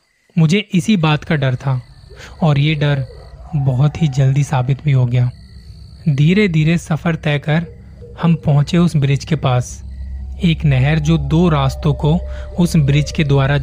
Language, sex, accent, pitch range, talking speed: Hindi, male, native, 125-155 Hz, 165 wpm